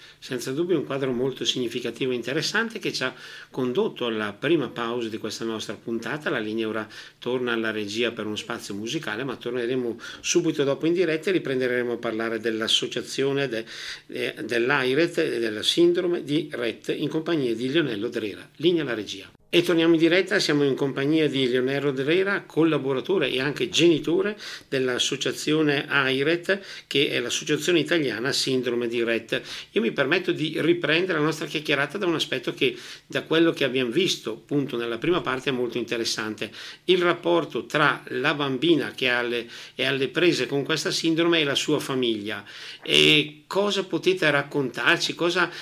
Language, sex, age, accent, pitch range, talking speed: Italian, male, 50-69, native, 120-165 Hz, 165 wpm